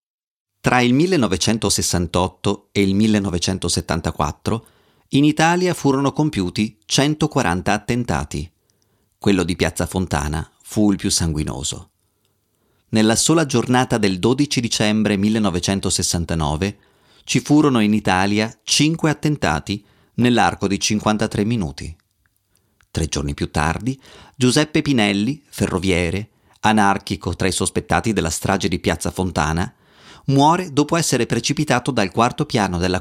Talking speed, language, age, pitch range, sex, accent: 110 wpm, Italian, 30-49, 90-125 Hz, male, native